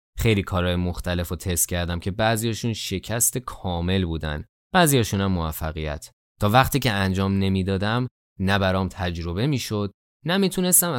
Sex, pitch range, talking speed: male, 90-125 Hz, 120 wpm